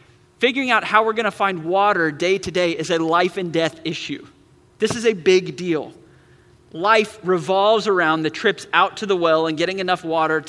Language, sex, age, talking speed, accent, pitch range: English, male, 30-49, 195 wpm, American, 160-215 Hz